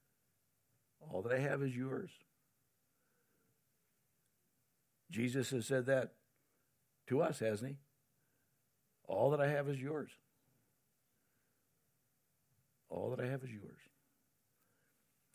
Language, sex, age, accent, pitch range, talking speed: English, male, 60-79, American, 125-165 Hz, 100 wpm